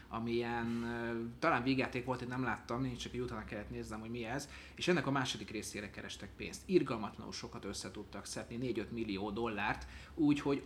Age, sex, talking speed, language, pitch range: 30-49, male, 175 wpm, Hungarian, 105-135 Hz